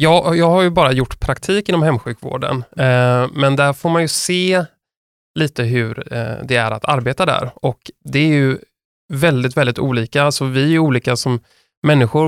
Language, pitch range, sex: Swedish, 125-155 Hz, male